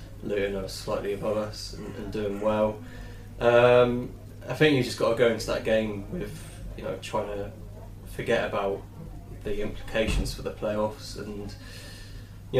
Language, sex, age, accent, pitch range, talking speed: English, male, 20-39, British, 100-115 Hz, 160 wpm